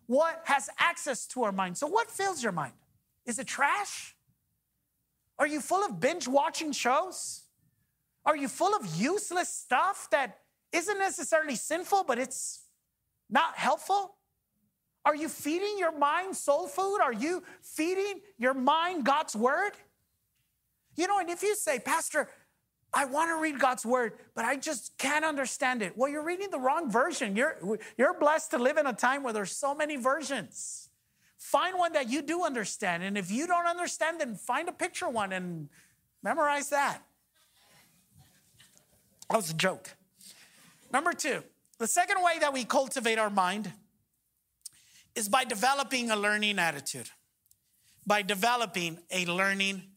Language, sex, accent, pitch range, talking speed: English, male, American, 220-330 Hz, 155 wpm